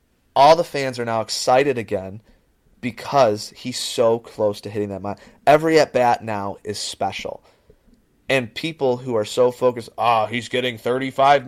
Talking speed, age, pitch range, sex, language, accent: 160 wpm, 30-49, 105-130 Hz, male, English, American